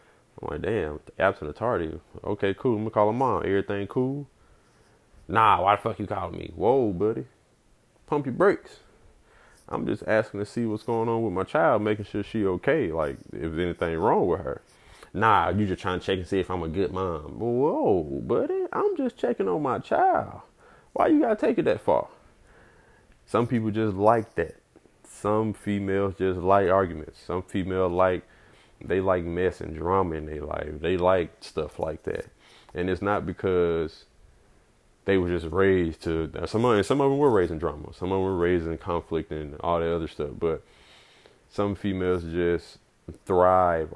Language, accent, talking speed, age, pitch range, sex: English, American, 190 wpm, 20-39, 85-115 Hz, male